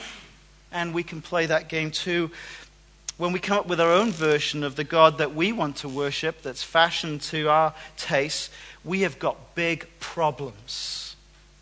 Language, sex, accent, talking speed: English, male, British, 170 wpm